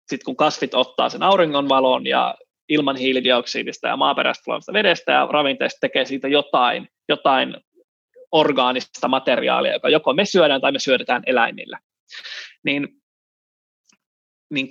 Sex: male